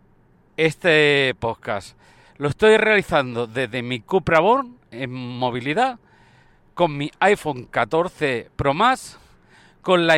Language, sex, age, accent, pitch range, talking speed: Spanish, male, 50-69, Spanish, 135-190 Hz, 110 wpm